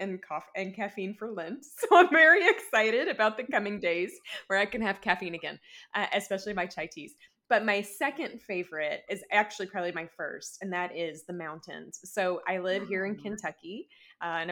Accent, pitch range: American, 170-205 Hz